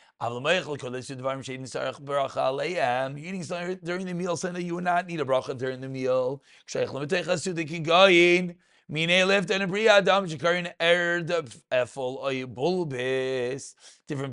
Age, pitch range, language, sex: 30-49, 140-190 Hz, English, male